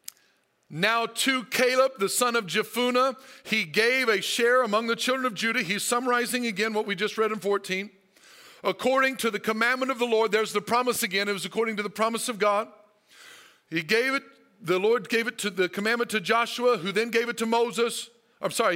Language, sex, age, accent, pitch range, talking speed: English, male, 50-69, American, 205-245 Hz, 205 wpm